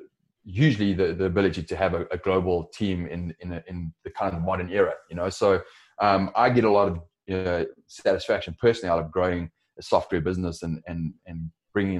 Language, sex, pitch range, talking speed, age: English, male, 85-100 Hz, 205 wpm, 20-39